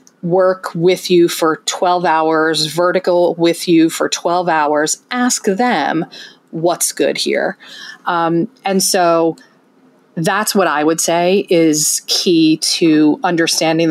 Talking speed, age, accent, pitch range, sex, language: 125 wpm, 30-49, American, 160-195 Hz, female, English